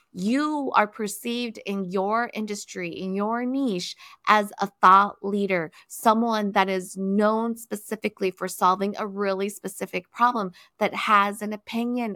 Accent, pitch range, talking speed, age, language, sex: American, 180-215 Hz, 140 wpm, 20-39, English, female